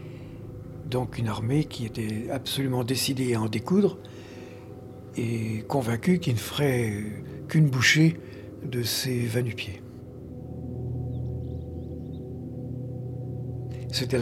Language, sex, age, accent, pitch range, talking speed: French, male, 60-79, French, 115-130 Hz, 90 wpm